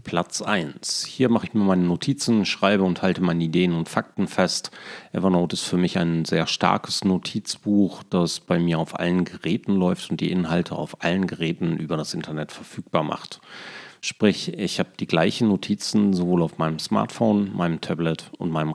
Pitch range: 80-95 Hz